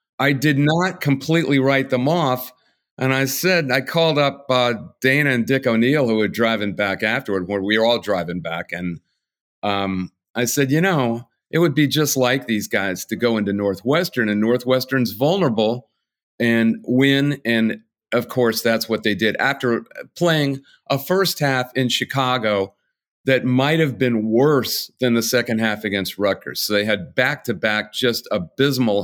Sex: male